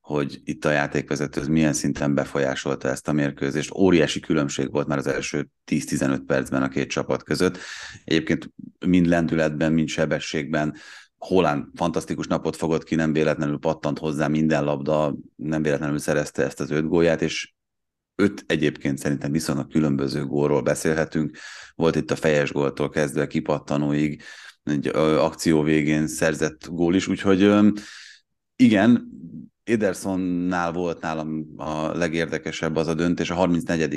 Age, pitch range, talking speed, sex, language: 30-49, 75-85 Hz, 140 wpm, male, Hungarian